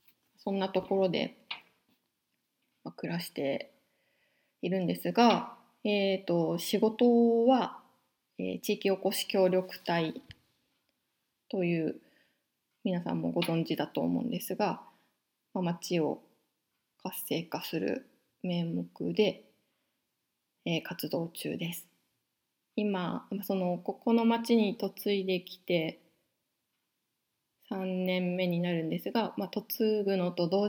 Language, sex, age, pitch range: Japanese, female, 20-39, 175-210 Hz